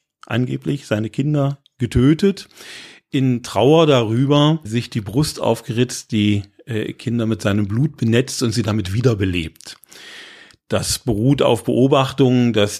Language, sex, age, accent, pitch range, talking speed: German, male, 40-59, German, 105-130 Hz, 125 wpm